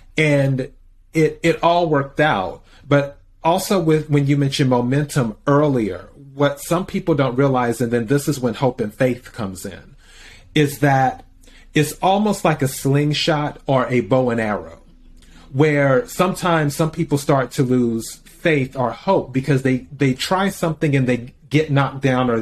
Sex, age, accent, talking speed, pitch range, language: male, 30-49, American, 165 wpm, 125-155 Hz, English